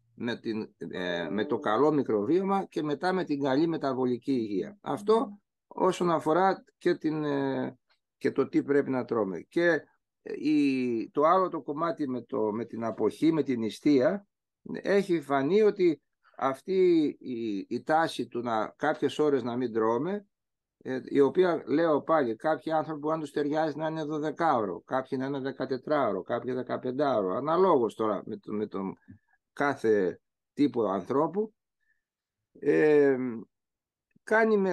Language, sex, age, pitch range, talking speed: Greek, male, 60-79, 130-175 Hz, 130 wpm